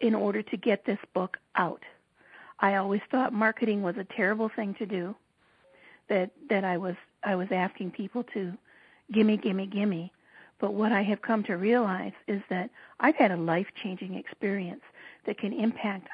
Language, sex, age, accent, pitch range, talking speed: English, female, 50-69, American, 195-235 Hz, 175 wpm